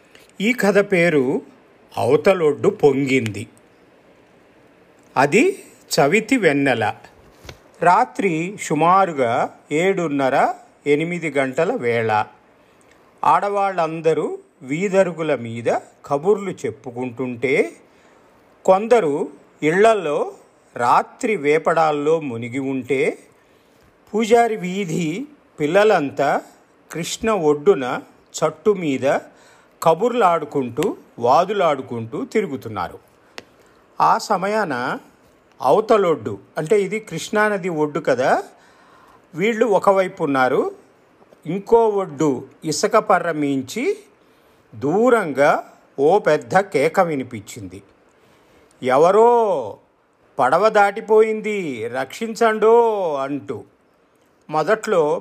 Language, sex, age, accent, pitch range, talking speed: Telugu, male, 40-59, native, 145-220 Hz, 70 wpm